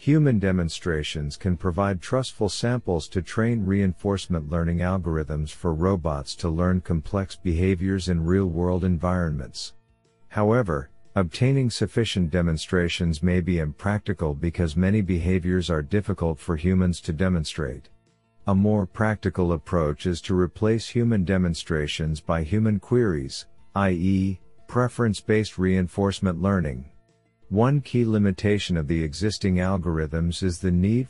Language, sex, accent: English, male, American